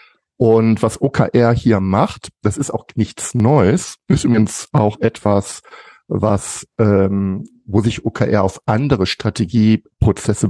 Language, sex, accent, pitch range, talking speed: German, male, German, 110-130 Hz, 125 wpm